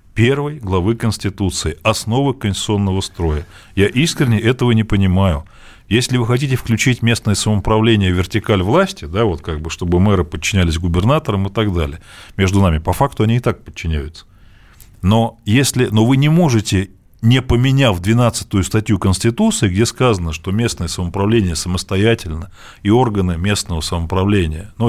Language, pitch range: Russian, 90-120 Hz